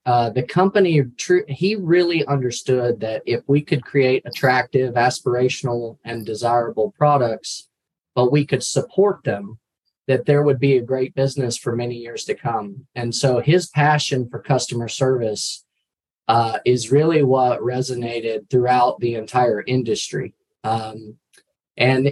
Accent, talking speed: American, 140 wpm